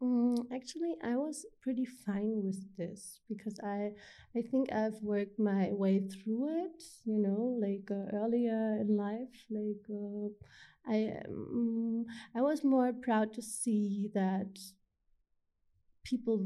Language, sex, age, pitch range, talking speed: English, female, 30-49, 195-230 Hz, 130 wpm